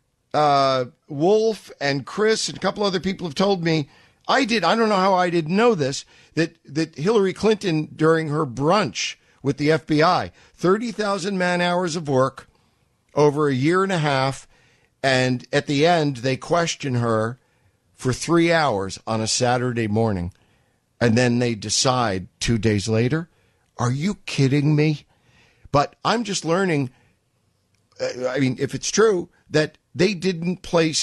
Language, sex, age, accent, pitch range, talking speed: English, male, 50-69, American, 120-170 Hz, 160 wpm